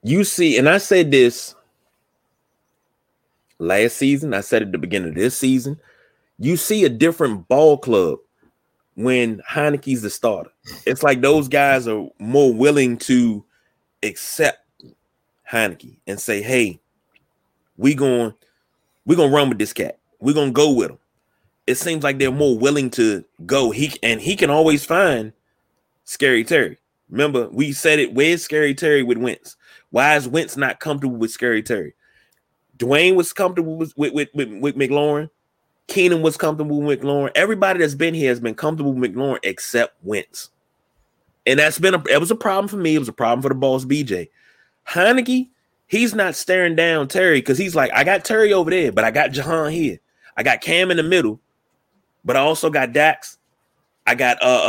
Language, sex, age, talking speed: English, male, 30-49, 180 wpm